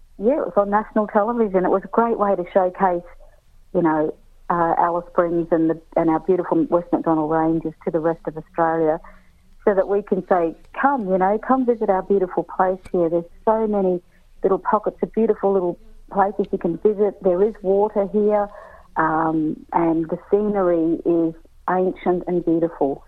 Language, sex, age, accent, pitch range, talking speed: English, female, 50-69, Australian, 165-205 Hz, 180 wpm